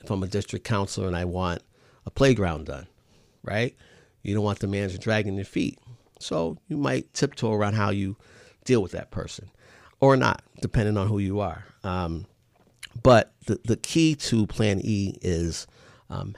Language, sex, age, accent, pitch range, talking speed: English, male, 50-69, American, 90-110 Hz, 175 wpm